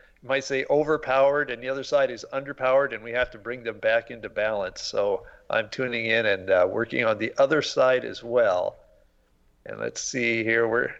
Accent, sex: American, male